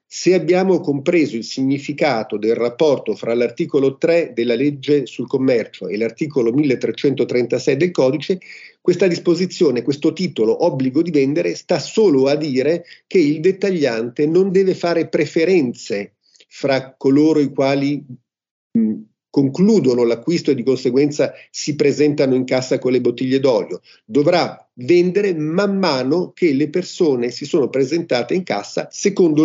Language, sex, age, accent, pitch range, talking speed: Italian, male, 50-69, native, 130-180 Hz, 135 wpm